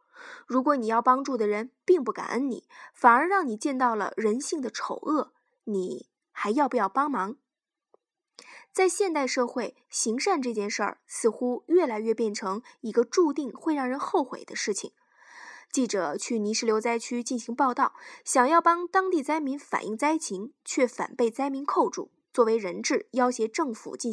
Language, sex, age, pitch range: Chinese, female, 20-39, 235-325 Hz